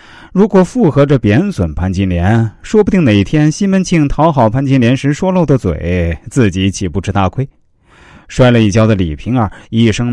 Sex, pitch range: male, 100-145 Hz